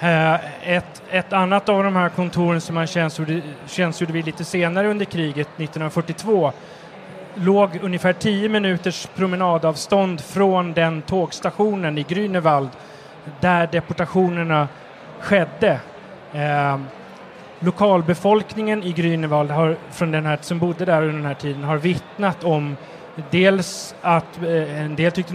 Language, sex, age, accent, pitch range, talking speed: Swedish, male, 30-49, native, 155-185 Hz, 125 wpm